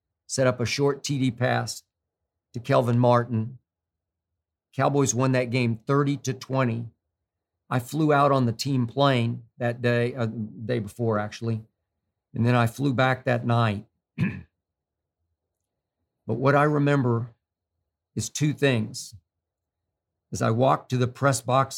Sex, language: male, English